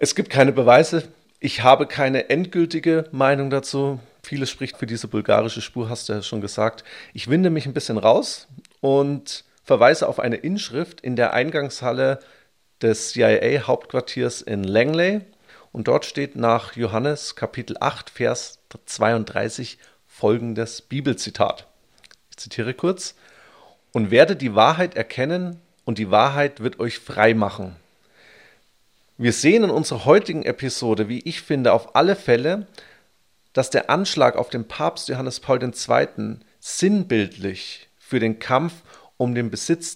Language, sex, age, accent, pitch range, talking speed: German, male, 40-59, German, 110-150 Hz, 140 wpm